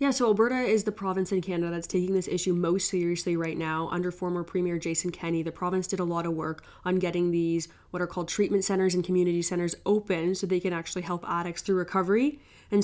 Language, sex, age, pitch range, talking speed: English, female, 20-39, 170-190 Hz, 230 wpm